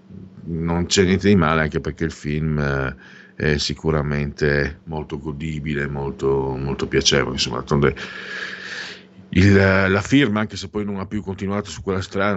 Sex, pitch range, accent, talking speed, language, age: male, 75-100 Hz, native, 140 wpm, Italian, 50-69